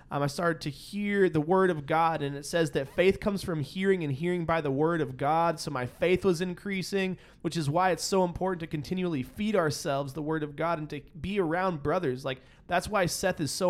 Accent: American